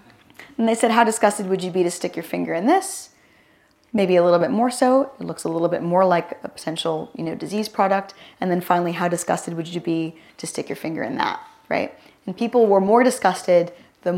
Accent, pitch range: American, 165-205 Hz